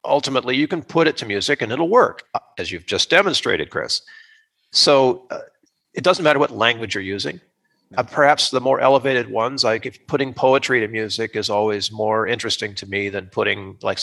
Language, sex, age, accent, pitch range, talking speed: English, male, 40-59, American, 110-150 Hz, 195 wpm